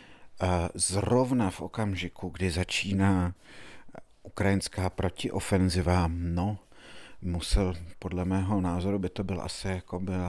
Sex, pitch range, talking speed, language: male, 90-100 Hz, 105 wpm, Slovak